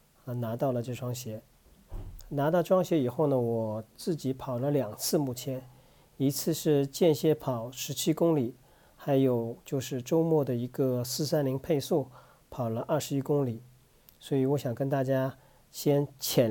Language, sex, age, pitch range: Chinese, male, 40-59, 125-155 Hz